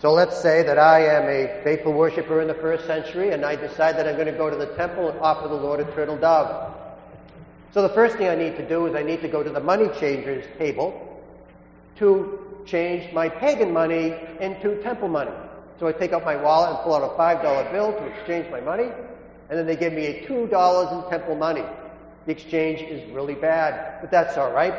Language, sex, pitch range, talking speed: English, male, 155-200 Hz, 225 wpm